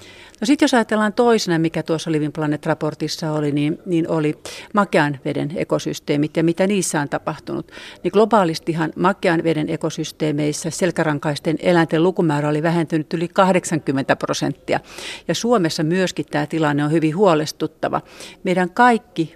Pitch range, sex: 150-180 Hz, female